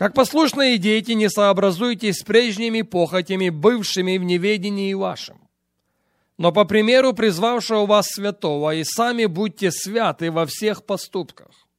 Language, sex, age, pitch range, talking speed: English, male, 30-49, 165-220 Hz, 125 wpm